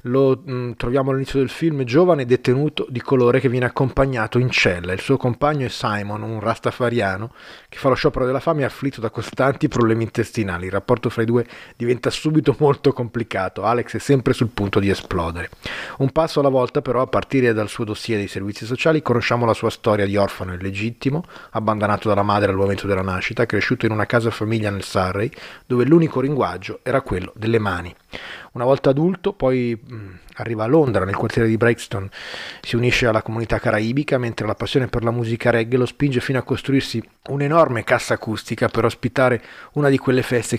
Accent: native